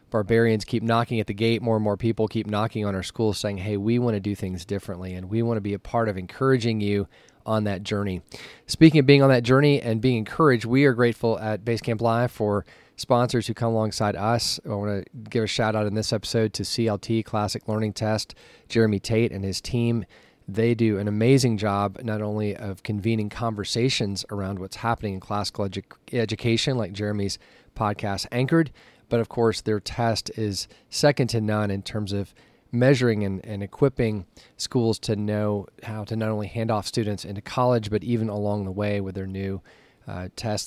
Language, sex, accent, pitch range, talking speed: English, male, American, 100-115 Hz, 200 wpm